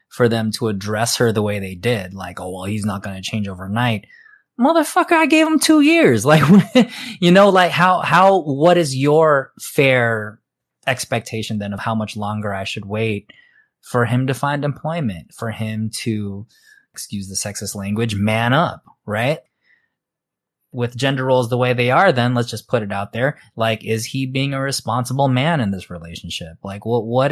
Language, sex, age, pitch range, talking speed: English, male, 20-39, 105-140 Hz, 190 wpm